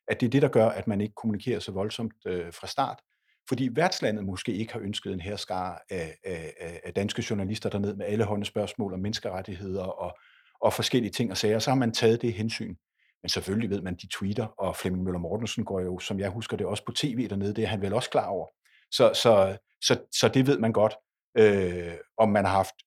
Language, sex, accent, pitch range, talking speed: Danish, male, native, 100-135 Hz, 230 wpm